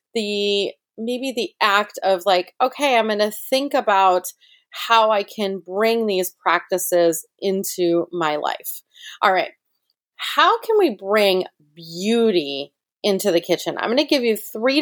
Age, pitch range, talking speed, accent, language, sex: 30-49, 175-225 Hz, 150 wpm, American, English, female